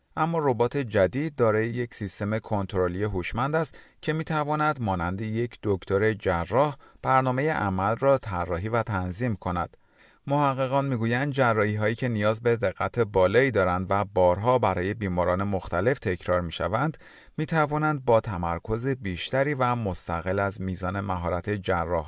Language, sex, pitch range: Persian, male, 95-130 Hz